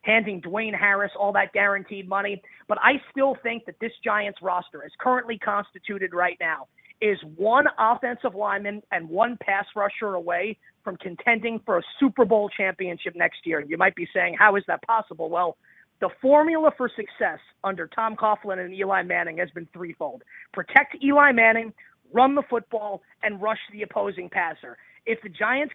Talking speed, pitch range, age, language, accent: 170 wpm, 195-230 Hz, 30-49, English, American